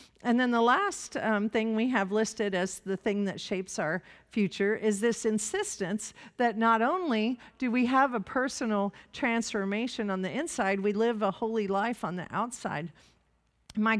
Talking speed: 170 wpm